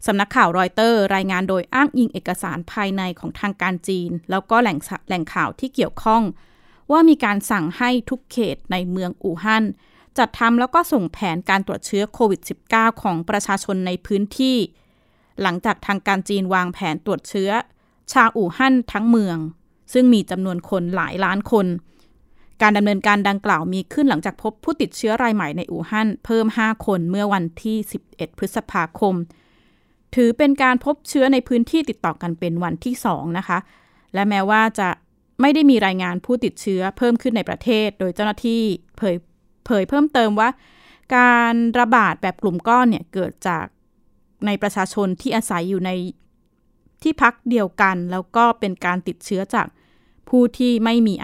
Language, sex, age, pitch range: Thai, female, 20-39, 185-235 Hz